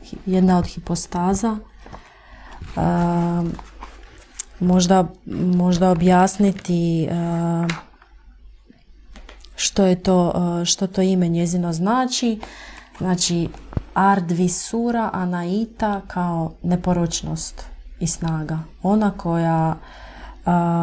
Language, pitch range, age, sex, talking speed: Croatian, 170-190 Hz, 30-49, female, 80 wpm